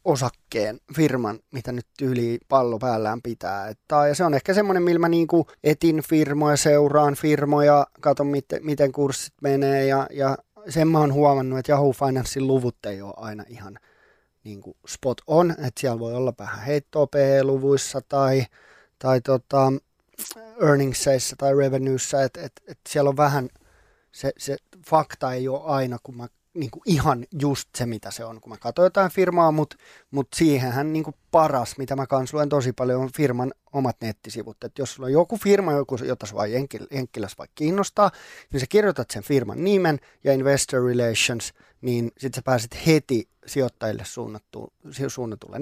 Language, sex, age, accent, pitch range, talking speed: Finnish, male, 20-39, native, 125-150 Hz, 160 wpm